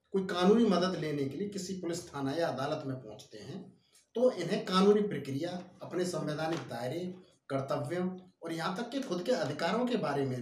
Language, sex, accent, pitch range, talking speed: Hindi, male, native, 150-215 Hz, 185 wpm